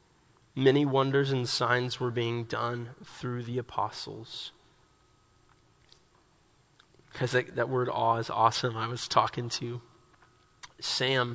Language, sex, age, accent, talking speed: English, male, 20-39, American, 115 wpm